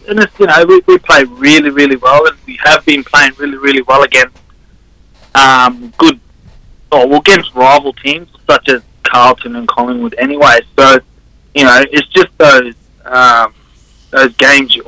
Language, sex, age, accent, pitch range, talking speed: English, male, 20-39, Australian, 125-155 Hz, 165 wpm